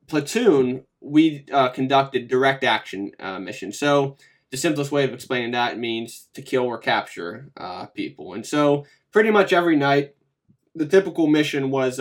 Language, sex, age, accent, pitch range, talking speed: English, male, 20-39, American, 125-145 Hz, 160 wpm